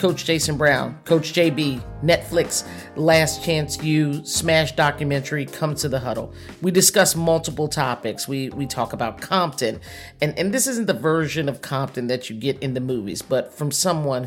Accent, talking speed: American, 170 wpm